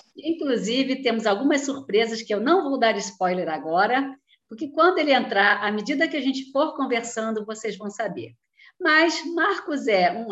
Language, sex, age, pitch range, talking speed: Portuguese, female, 50-69, 195-265 Hz, 170 wpm